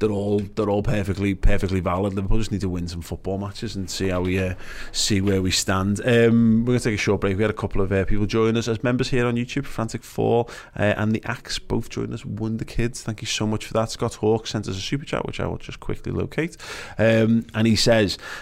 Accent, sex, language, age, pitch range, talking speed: British, male, English, 20-39, 100-120 Hz, 260 wpm